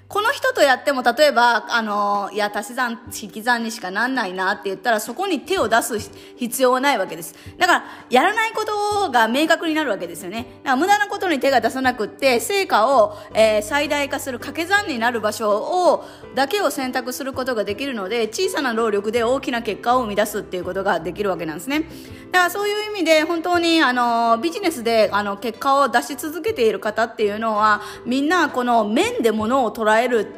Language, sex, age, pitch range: Japanese, female, 20-39, 210-315 Hz